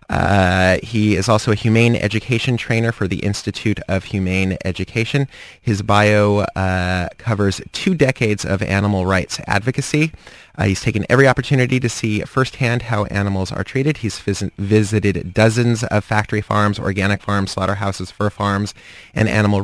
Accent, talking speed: American, 150 wpm